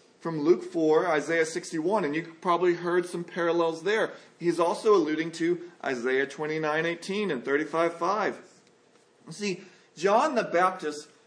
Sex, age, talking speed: male, 40-59, 140 wpm